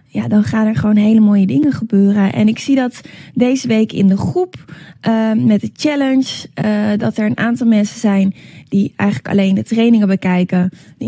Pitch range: 200-235 Hz